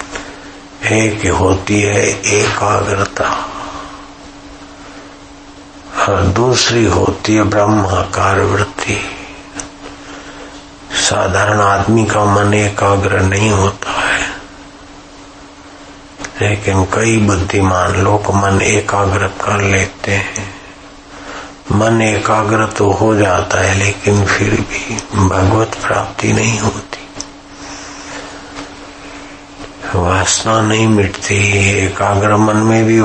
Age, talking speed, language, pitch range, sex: 60-79, 85 wpm, Hindi, 95-105 Hz, male